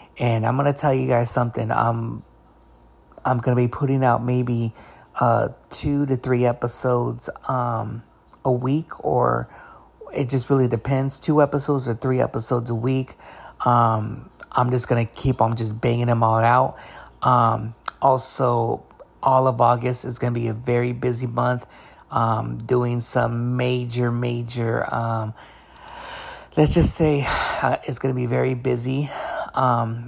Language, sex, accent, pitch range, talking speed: English, male, American, 120-140 Hz, 160 wpm